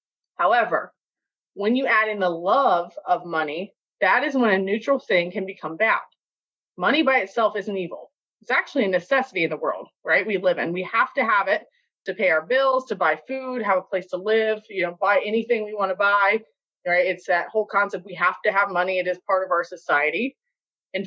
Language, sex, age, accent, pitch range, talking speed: English, female, 20-39, American, 185-245 Hz, 215 wpm